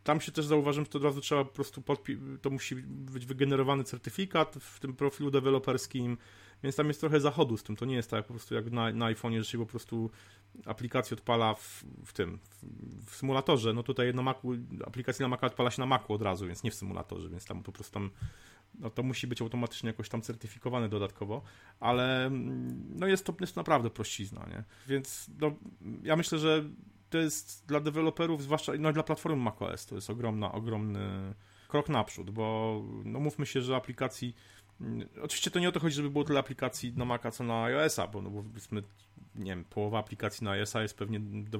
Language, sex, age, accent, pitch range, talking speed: Polish, male, 30-49, native, 105-140 Hz, 210 wpm